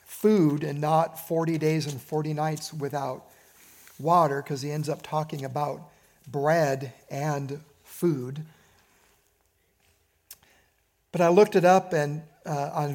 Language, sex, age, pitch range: English, male, 50-69, 145-180 Hz